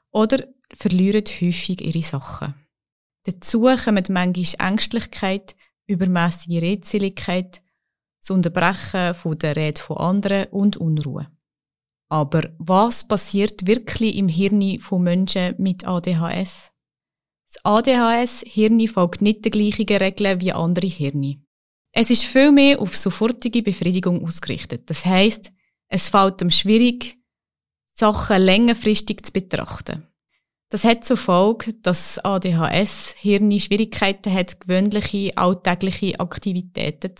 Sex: female